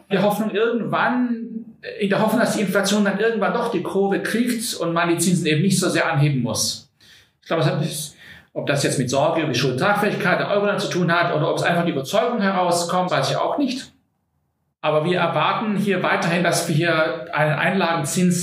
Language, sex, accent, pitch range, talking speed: German, male, German, 150-195 Hz, 210 wpm